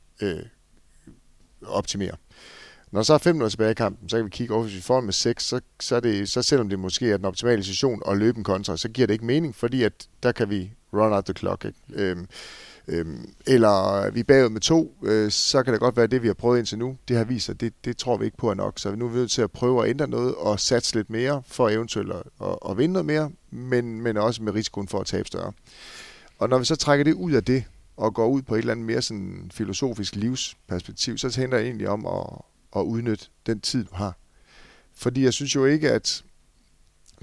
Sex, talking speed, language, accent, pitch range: male, 240 wpm, Danish, native, 100-125 Hz